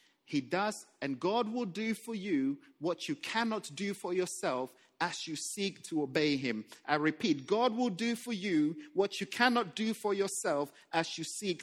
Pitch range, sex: 150-255 Hz, male